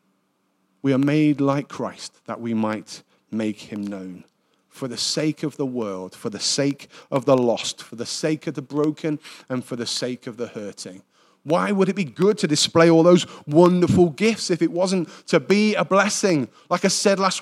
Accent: British